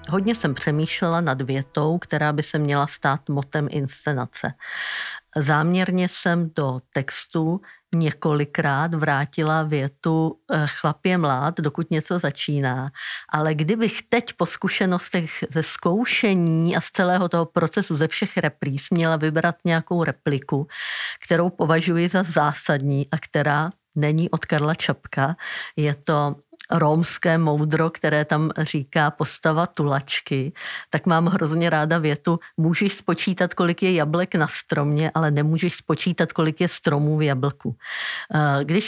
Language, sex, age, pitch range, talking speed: Czech, female, 50-69, 150-180 Hz, 130 wpm